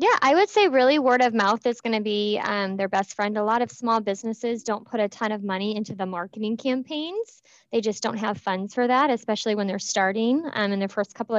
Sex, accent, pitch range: female, American, 195-225 Hz